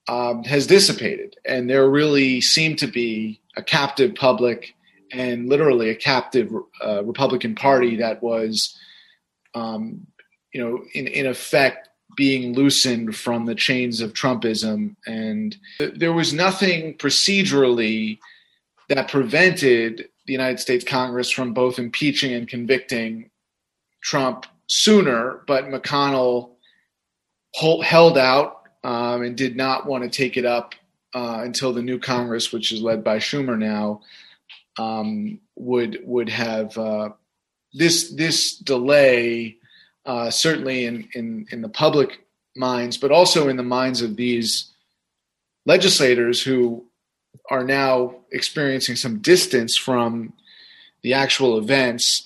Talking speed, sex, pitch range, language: 125 wpm, male, 115-140 Hz, English